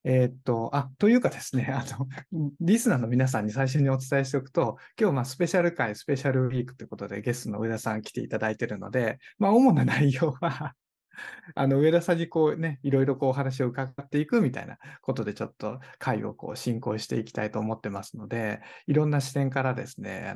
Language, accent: Japanese, native